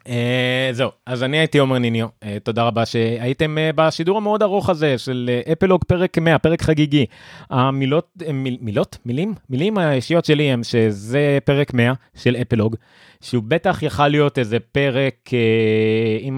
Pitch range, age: 105-145 Hz, 30-49